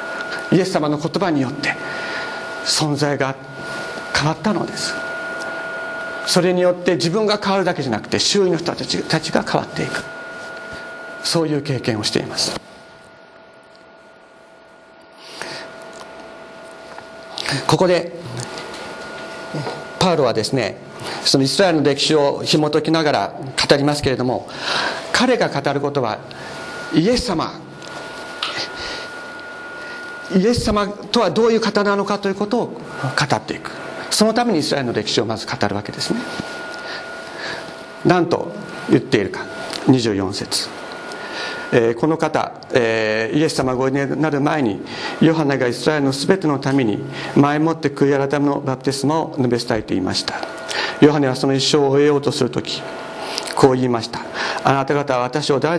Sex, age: male, 50-69